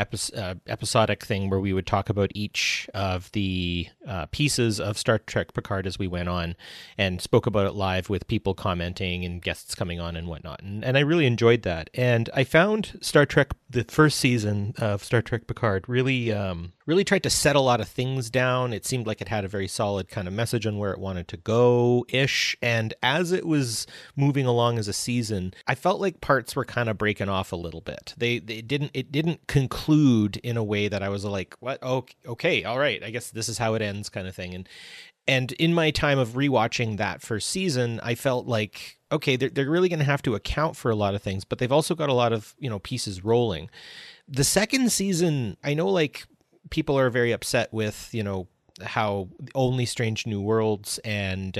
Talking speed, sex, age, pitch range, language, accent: 215 wpm, male, 30-49, 100-130 Hz, English, American